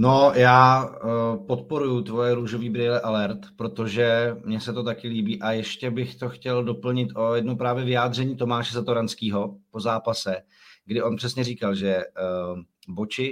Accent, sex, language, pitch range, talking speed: native, male, Czech, 110-125 Hz, 150 wpm